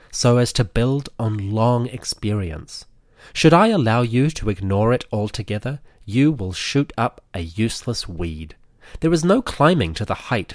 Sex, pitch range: male, 100-135 Hz